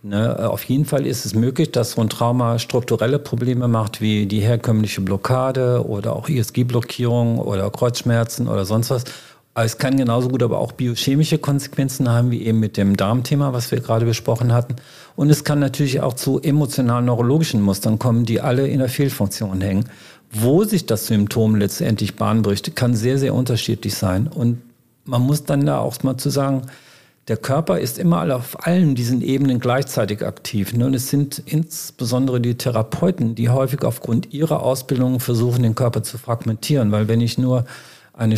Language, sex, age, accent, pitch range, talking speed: German, male, 50-69, German, 115-135 Hz, 175 wpm